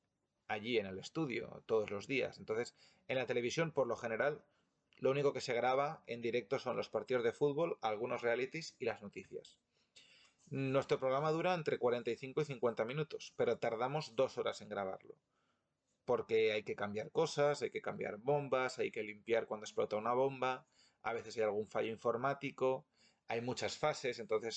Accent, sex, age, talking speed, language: Spanish, male, 30-49, 175 wpm, Spanish